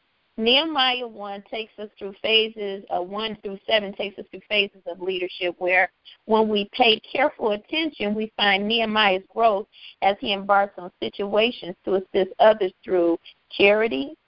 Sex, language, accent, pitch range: female, English, American, 185-225 Hz